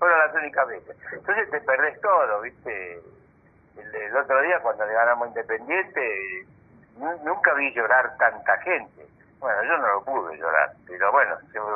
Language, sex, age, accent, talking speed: Spanish, male, 60-79, Argentinian, 165 wpm